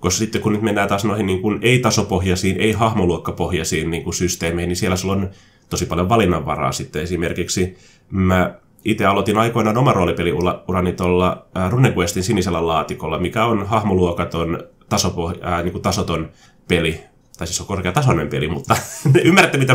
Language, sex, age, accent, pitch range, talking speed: Finnish, male, 30-49, native, 90-115 Hz, 150 wpm